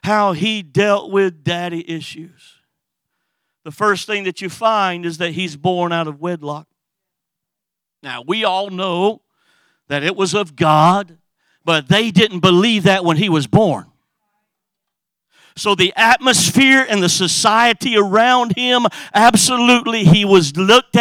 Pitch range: 180-235 Hz